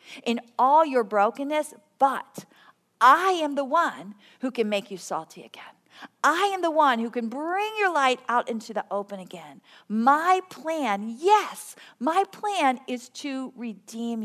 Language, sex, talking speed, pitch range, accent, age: English, female, 155 wpm, 215-300 Hz, American, 50-69